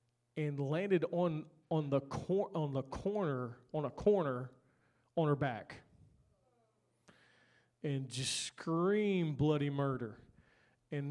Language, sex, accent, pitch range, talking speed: English, male, American, 140-170 Hz, 115 wpm